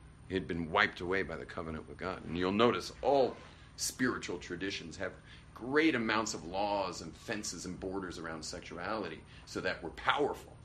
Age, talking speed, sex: 40-59, 170 wpm, male